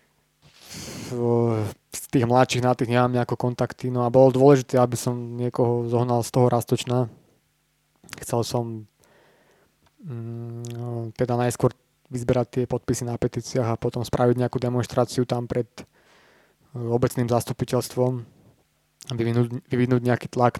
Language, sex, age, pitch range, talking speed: Slovak, male, 20-39, 120-130 Hz, 115 wpm